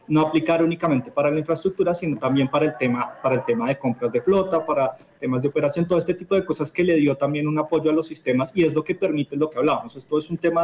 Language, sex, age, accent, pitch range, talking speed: Spanish, male, 30-49, Colombian, 130-160 Hz, 270 wpm